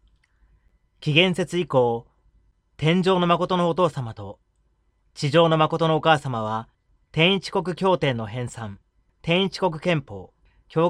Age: 30-49